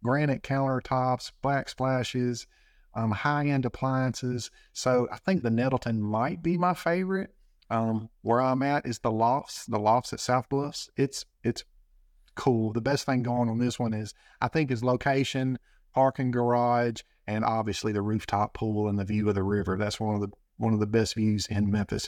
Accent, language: American, English